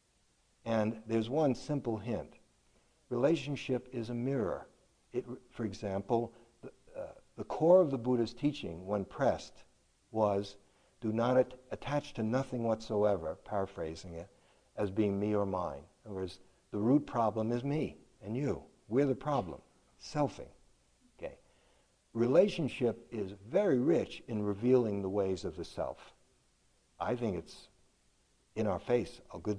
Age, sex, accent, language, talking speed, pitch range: 60-79, male, American, English, 140 wpm, 105-130 Hz